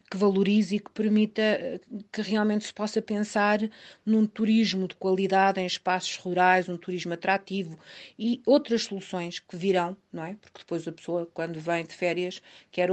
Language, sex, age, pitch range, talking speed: Portuguese, female, 40-59, 170-195 Hz, 165 wpm